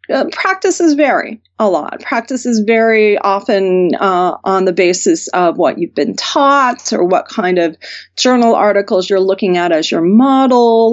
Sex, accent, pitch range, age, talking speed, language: female, American, 180-230 Hz, 30-49, 160 wpm, English